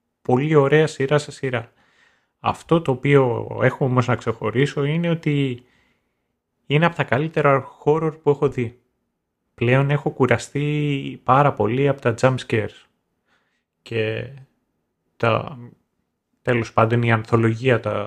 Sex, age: male, 30-49